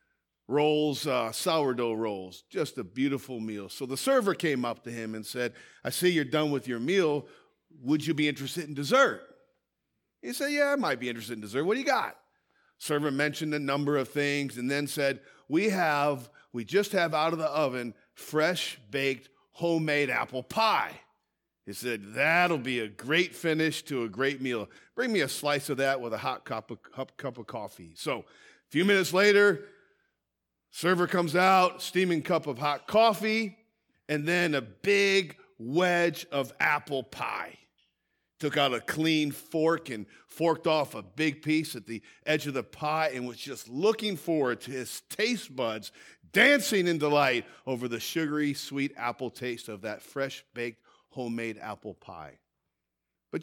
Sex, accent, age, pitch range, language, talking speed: male, American, 40-59, 125-170 Hz, English, 175 wpm